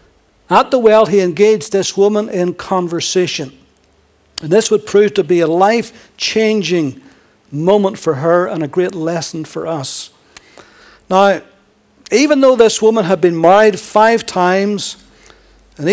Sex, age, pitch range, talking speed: male, 60-79, 170-220 Hz, 140 wpm